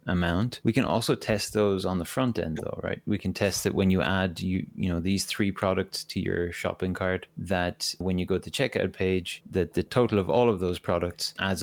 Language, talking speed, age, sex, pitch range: English, 235 wpm, 30-49, male, 90-105 Hz